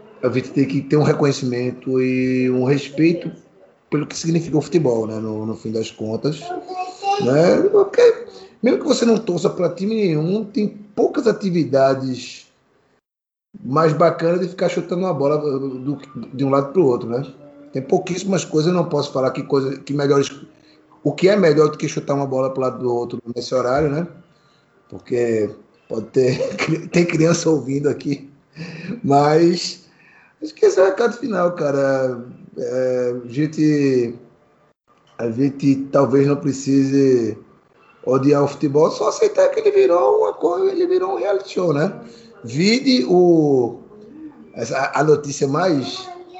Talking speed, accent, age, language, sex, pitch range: 155 wpm, Brazilian, 20-39, Portuguese, male, 135-185 Hz